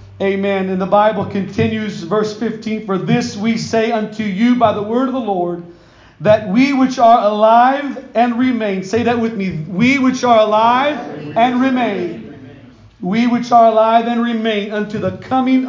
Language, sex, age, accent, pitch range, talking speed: English, male, 40-59, American, 195-240 Hz, 170 wpm